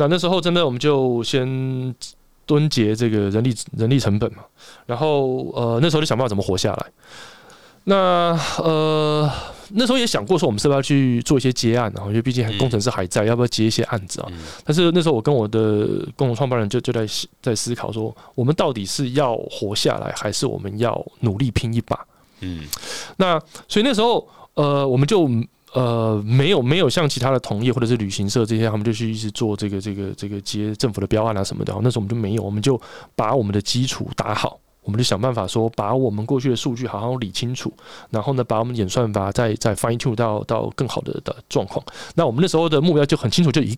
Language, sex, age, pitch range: Chinese, male, 20-39, 110-140 Hz